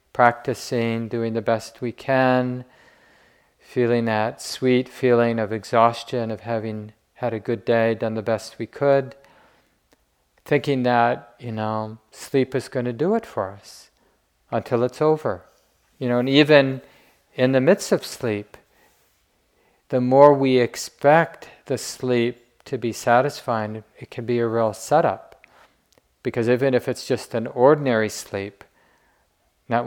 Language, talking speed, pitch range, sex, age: English, 145 wpm, 115-130 Hz, male, 40-59